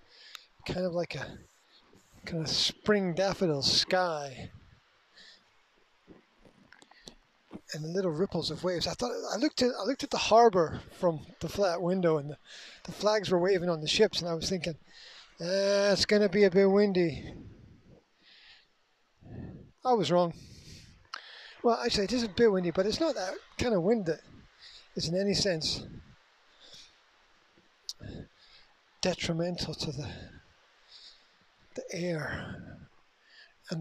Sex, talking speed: male, 135 wpm